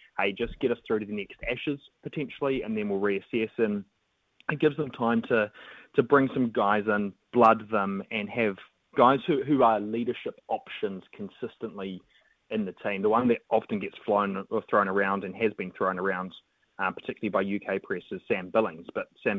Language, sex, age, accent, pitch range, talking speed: English, male, 20-39, Australian, 100-125 Hz, 195 wpm